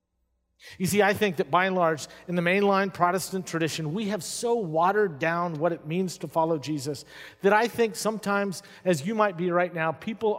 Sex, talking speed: male, 200 wpm